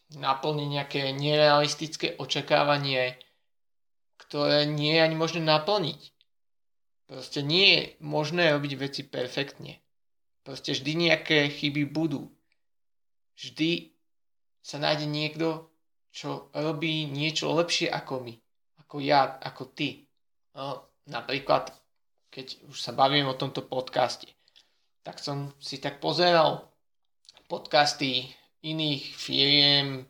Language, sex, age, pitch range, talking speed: Slovak, male, 20-39, 135-155 Hz, 105 wpm